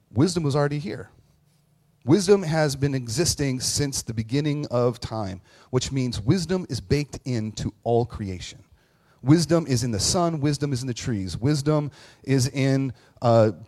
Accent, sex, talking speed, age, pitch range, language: American, male, 155 wpm, 30-49, 115-150 Hz, English